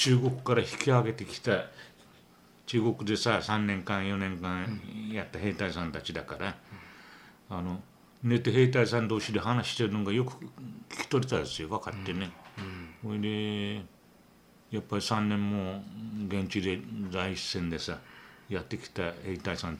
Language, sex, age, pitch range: Japanese, male, 60-79, 85-110 Hz